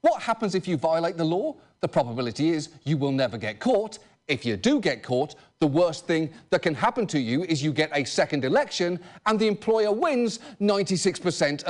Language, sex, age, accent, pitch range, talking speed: English, male, 40-59, British, 145-215 Hz, 200 wpm